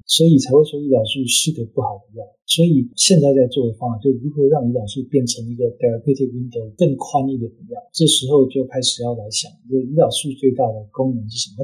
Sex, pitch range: male, 115-140 Hz